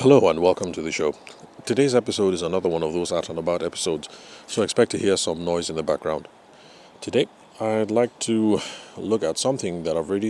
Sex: male